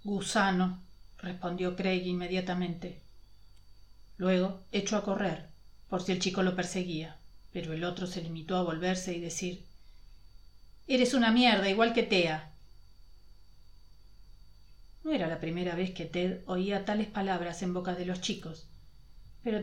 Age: 40-59